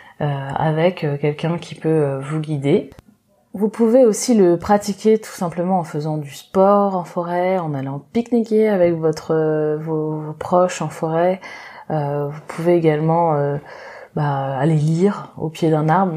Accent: French